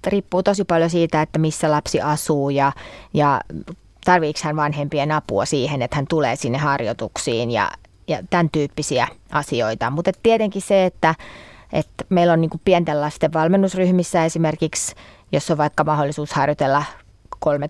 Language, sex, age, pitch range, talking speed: Finnish, female, 30-49, 145-170 Hz, 135 wpm